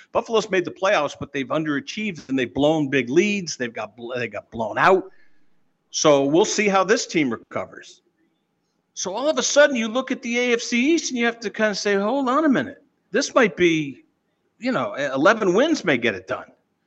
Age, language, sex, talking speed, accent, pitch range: 50-69, English, male, 205 wpm, American, 145-205 Hz